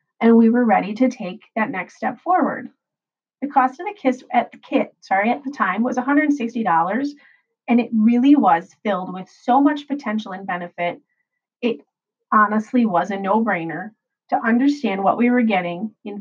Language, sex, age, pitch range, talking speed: English, female, 30-49, 200-260 Hz, 165 wpm